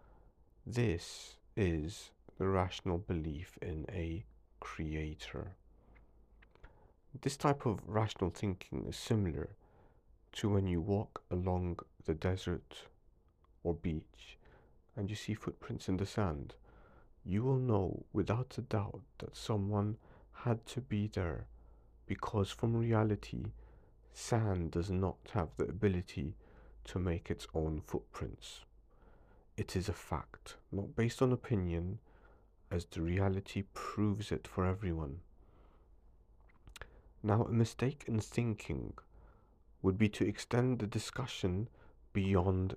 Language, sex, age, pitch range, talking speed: English, male, 50-69, 85-110 Hz, 120 wpm